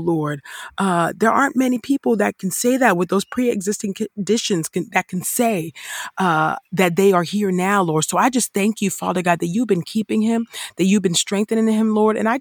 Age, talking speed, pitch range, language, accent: 40-59, 220 wpm, 170-220 Hz, English, American